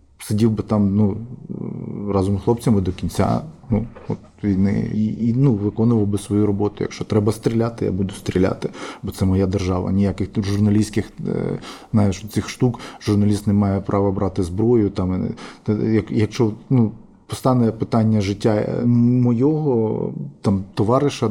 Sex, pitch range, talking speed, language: male, 100-115 Hz, 140 wpm, Ukrainian